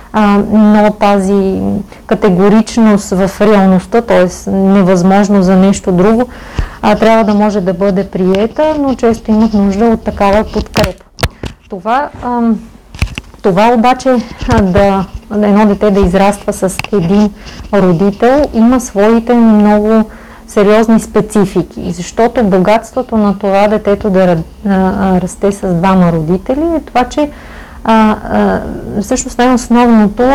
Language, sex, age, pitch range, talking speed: Bulgarian, female, 30-49, 195-230 Hz, 120 wpm